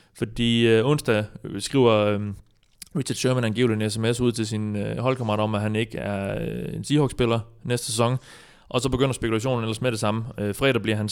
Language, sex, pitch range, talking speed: Danish, male, 105-125 Hz, 200 wpm